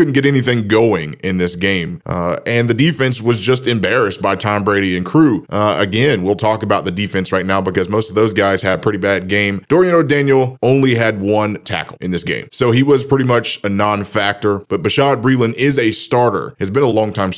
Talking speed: 220 wpm